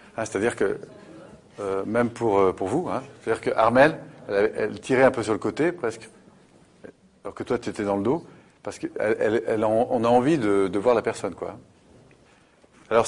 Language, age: French, 40-59